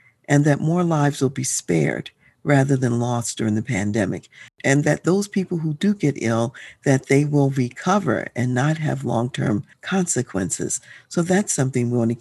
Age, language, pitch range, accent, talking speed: 50-69, English, 120-170 Hz, American, 175 wpm